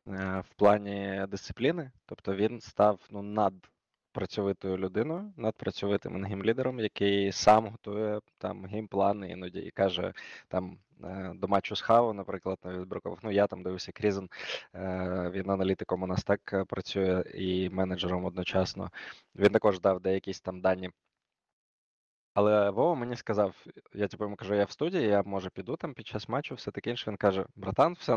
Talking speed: 150 wpm